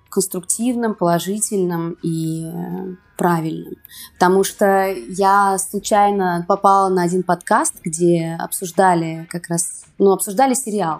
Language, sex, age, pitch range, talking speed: Russian, female, 20-39, 170-200 Hz, 105 wpm